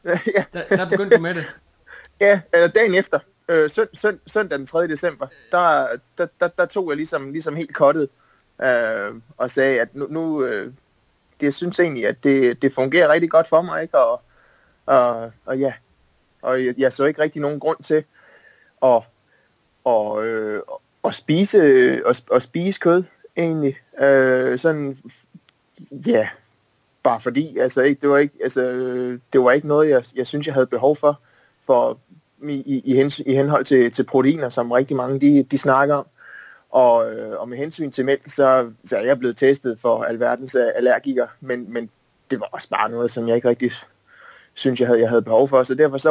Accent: native